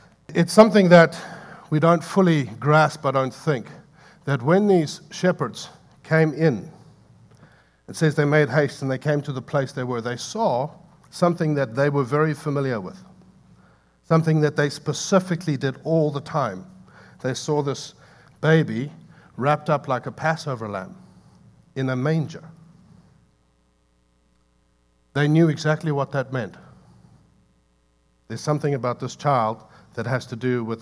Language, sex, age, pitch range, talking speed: English, male, 60-79, 125-155 Hz, 145 wpm